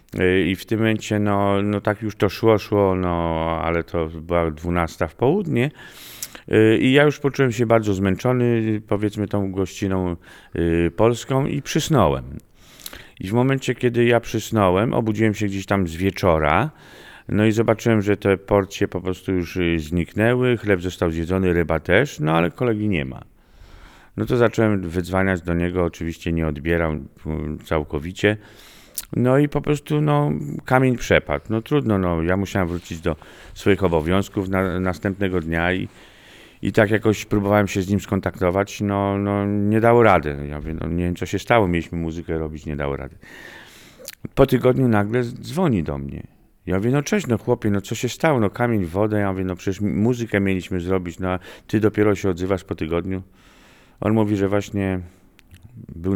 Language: Polish